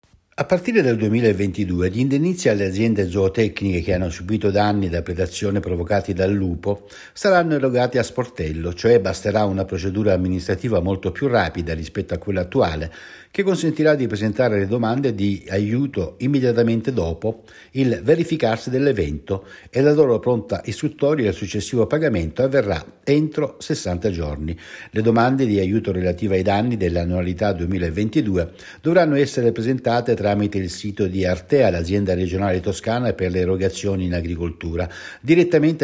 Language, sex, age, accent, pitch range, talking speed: Italian, male, 60-79, native, 95-135 Hz, 145 wpm